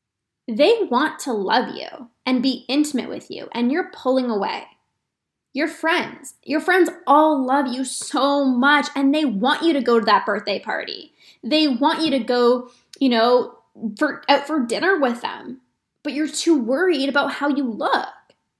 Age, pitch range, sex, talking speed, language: 10-29, 245-300 Hz, female, 175 wpm, English